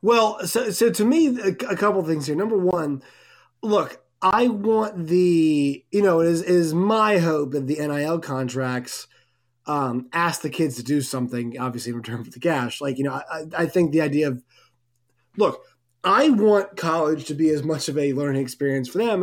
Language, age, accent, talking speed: English, 20-39, American, 195 wpm